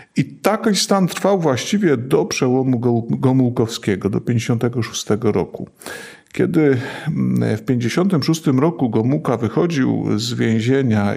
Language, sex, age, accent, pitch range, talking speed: Polish, male, 50-69, native, 110-135 Hz, 100 wpm